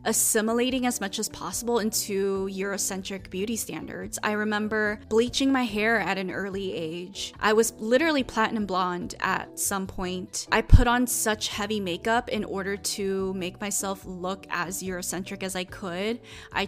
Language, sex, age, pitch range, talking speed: English, female, 20-39, 195-225 Hz, 160 wpm